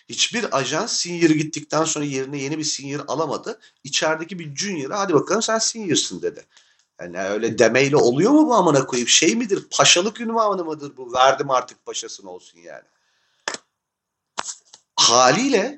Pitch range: 145-195 Hz